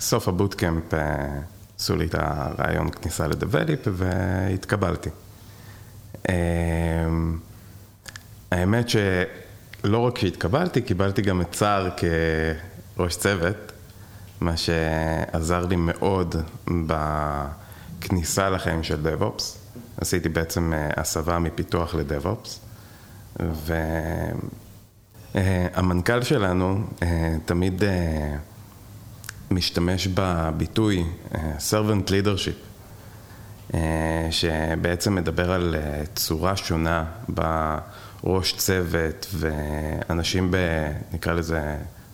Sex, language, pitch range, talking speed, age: male, Hebrew, 85-105 Hz, 75 wpm, 30-49